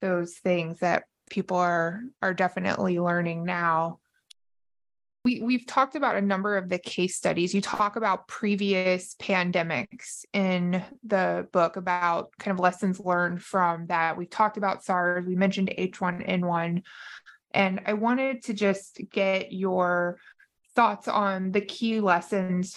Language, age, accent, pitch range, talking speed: English, 20-39, American, 180-210 Hz, 140 wpm